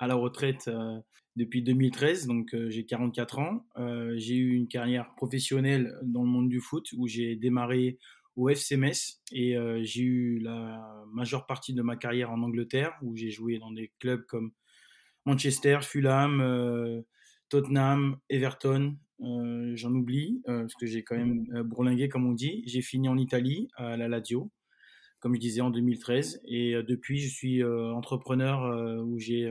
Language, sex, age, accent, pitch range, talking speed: French, male, 20-39, French, 120-135 Hz, 160 wpm